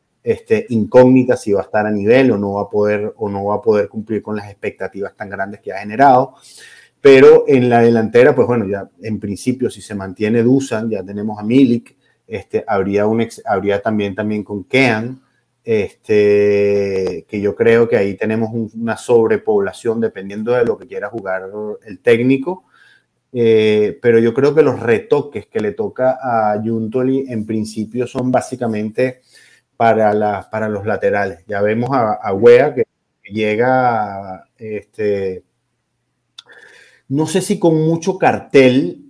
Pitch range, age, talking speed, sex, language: 105-135 Hz, 30-49, 160 wpm, male, Spanish